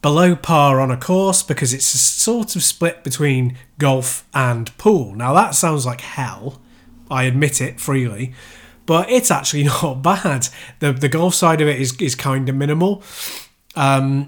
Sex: male